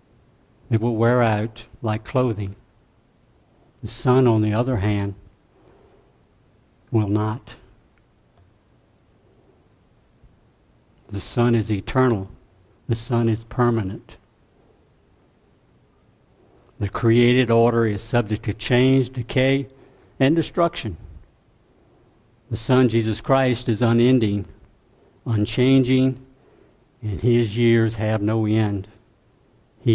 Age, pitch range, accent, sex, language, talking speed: 60-79, 110-120 Hz, American, male, English, 90 wpm